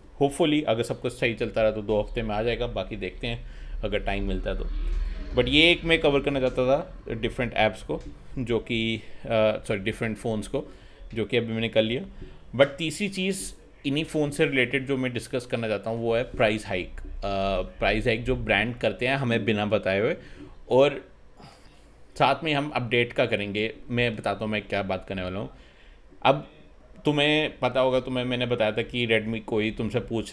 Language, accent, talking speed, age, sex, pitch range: Hindi, native, 200 wpm, 30-49, male, 100-125 Hz